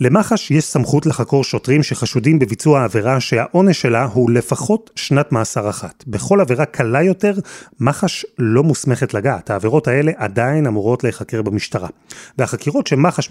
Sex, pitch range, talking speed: male, 120-170 Hz, 140 wpm